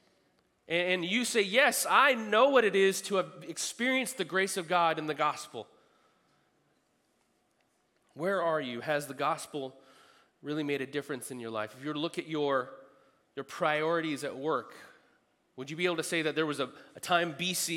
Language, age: English, 30-49